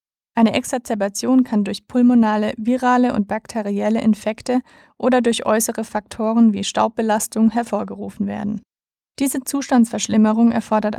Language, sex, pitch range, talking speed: German, female, 210-240 Hz, 110 wpm